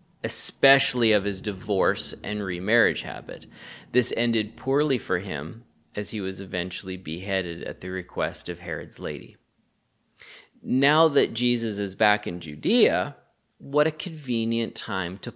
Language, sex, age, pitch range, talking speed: English, male, 30-49, 95-120 Hz, 135 wpm